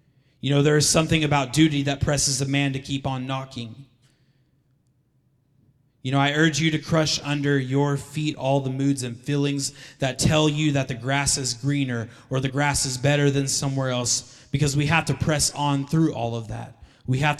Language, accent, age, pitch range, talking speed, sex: English, American, 20-39, 130-145 Hz, 200 wpm, male